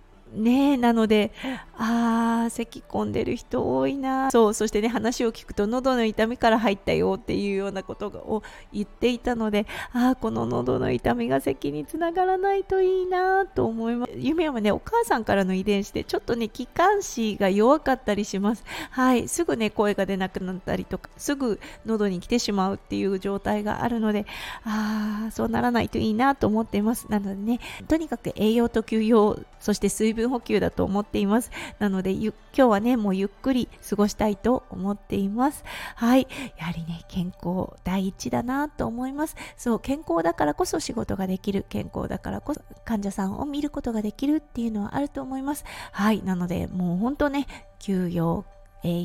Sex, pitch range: female, 195-260 Hz